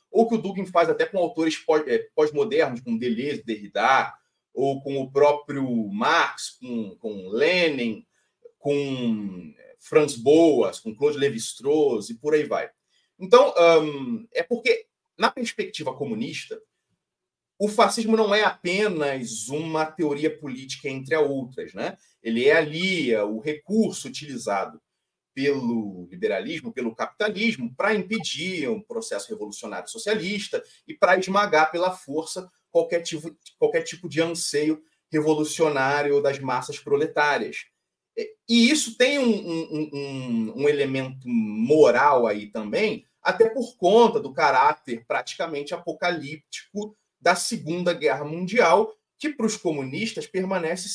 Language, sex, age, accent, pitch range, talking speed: Portuguese, male, 30-49, Brazilian, 145-225 Hz, 125 wpm